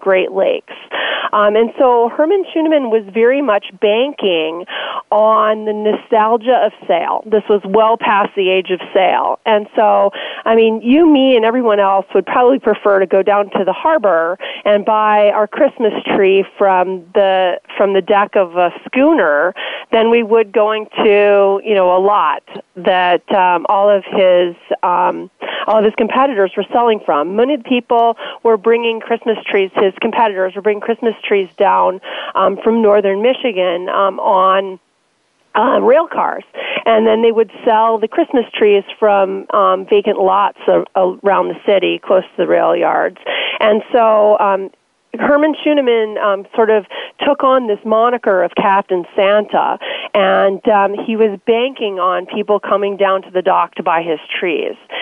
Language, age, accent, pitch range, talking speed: English, 40-59, American, 190-230 Hz, 165 wpm